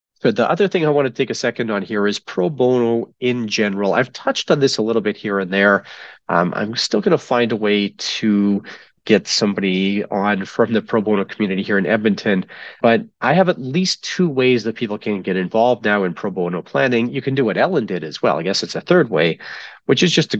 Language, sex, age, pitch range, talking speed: English, male, 40-59, 95-120 Hz, 240 wpm